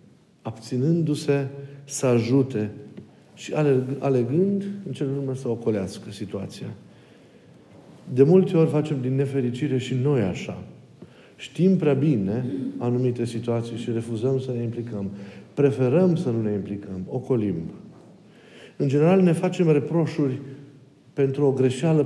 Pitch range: 120-145 Hz